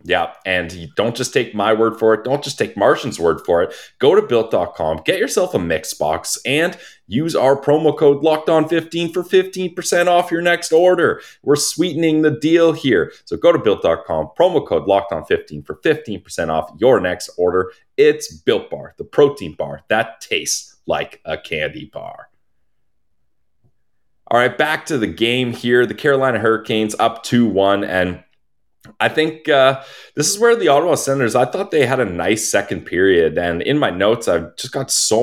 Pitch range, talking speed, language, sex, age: 105-175 Hz, 180 wpm, English, male, 30-49